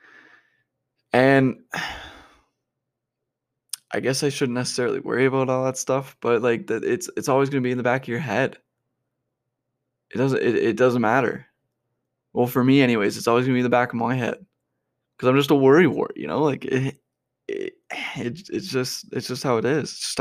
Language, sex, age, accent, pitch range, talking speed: English, male, 20-39, American, 120-135 Hz, 205 wpm